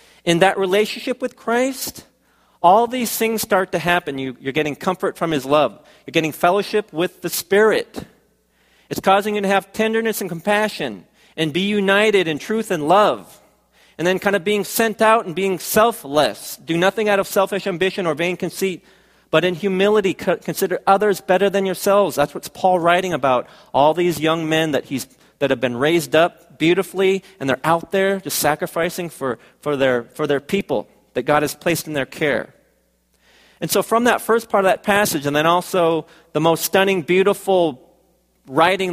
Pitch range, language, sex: 150-195 Hz, Korean, male